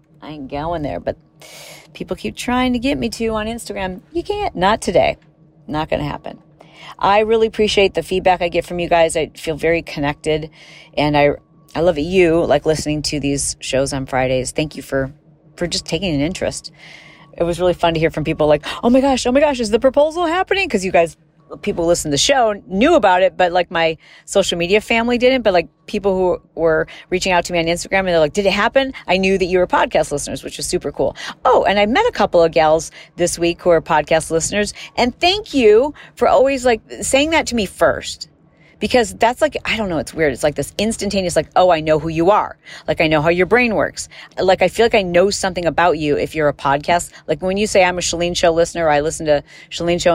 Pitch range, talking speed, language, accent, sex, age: 155-205 Hz, 240 wpm, English, American, female, 40-59